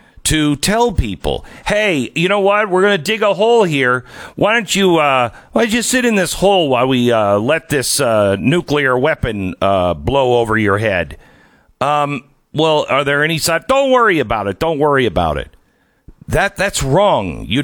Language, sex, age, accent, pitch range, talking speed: English, male, 50-69, American, 100-155 Hz, 190 wpm